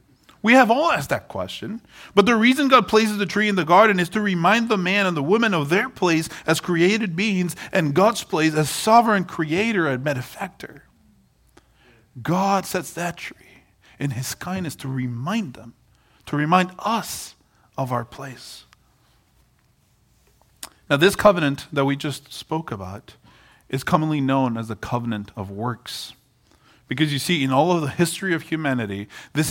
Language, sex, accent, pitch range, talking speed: English, male, American, 120-180 Hz, 165 wpm